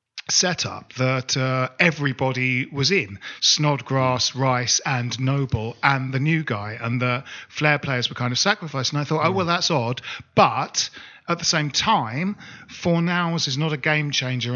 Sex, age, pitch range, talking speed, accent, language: male, 40-59, 125-160 Hz, 170 wpm, British, English